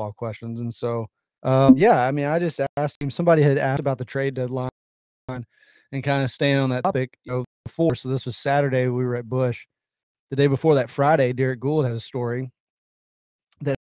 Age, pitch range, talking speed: 30-49, 125-145 Hz, 205 wpm